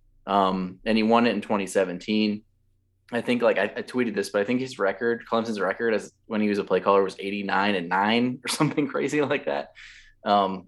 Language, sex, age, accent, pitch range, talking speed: English, male, 20-39, American, 95-110 Hz, 215 wpm